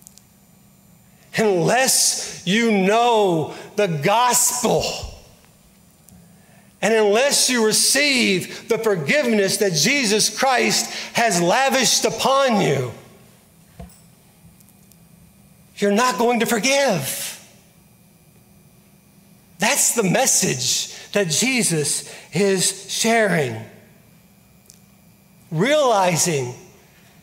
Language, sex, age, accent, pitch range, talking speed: English, male, 40-59, American, 175-220 Hz, 70 wpm